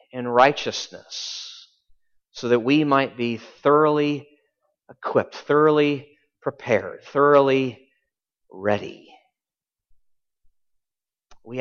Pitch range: 115-165 Hz